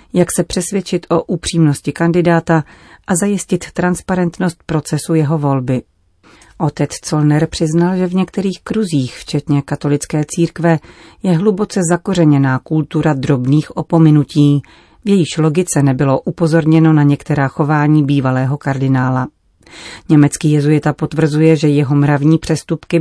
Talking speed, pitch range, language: 115 wpm, 145-170 Hz, Czech